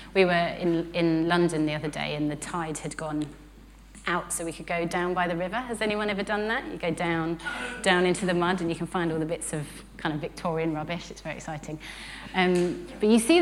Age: 30-49